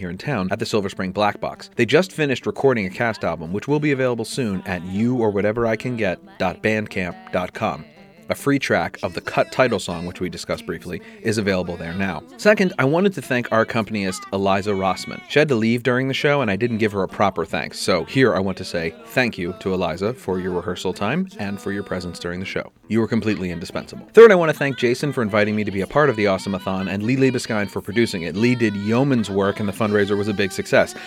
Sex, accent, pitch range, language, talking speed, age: male, American, 95-125 Hz, English, 245 wpm, 30-49